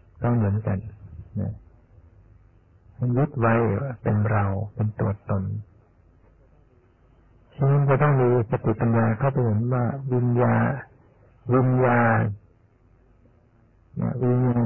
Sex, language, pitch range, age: male, Thai, 100-120 Hz, 60-79